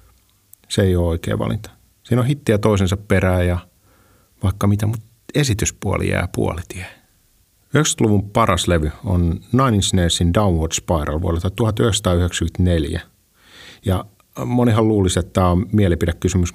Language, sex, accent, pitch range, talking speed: Finnish, male, native, 90-110 Hz, 125 wpm